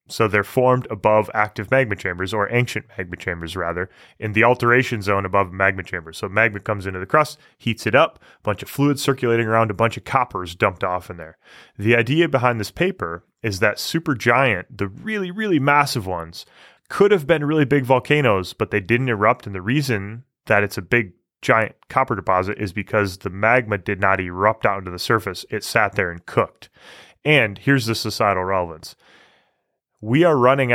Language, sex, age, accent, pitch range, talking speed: English, male, 20-39, American, 100-130 Hz, 195 wpm